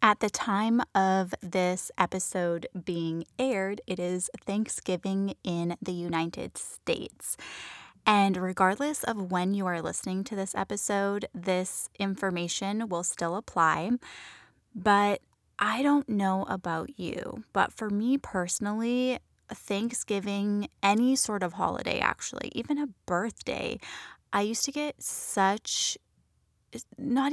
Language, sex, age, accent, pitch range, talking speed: English, female, 10-29, American, 185-220 Hz, 125 wpm